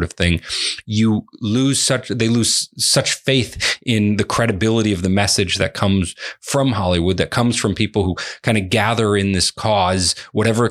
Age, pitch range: 30-49, 95-115 Hz